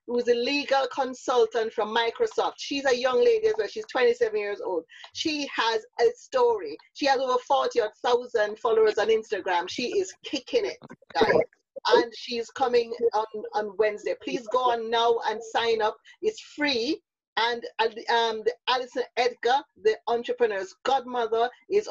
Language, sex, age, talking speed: English, female, 30-49, 155 wpm